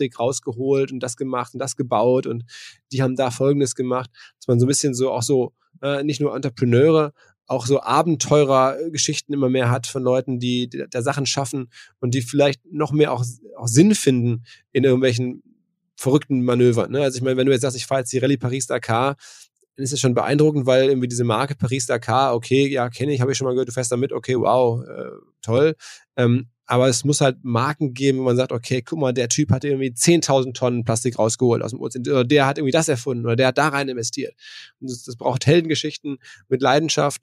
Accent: German